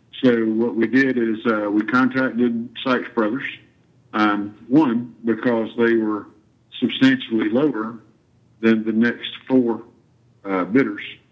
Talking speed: 120 wpm